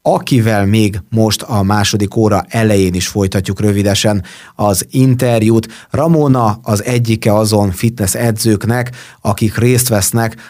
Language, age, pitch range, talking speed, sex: Hungarian, 30-49, 100-115 Hz, 120 wpm, male